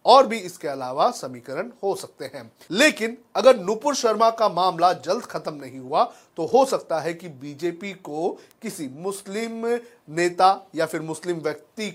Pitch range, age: 170-230 Hz, 40-59